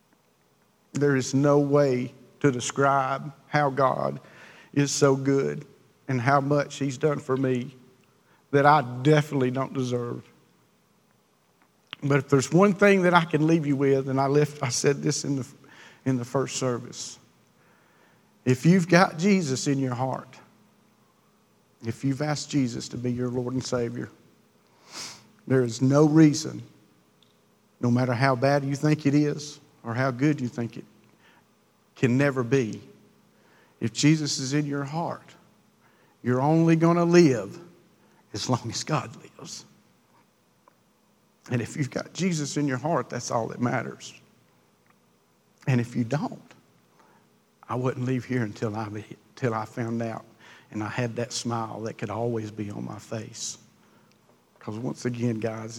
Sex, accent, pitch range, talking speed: male, American, 120-145 Hz, 155 wpm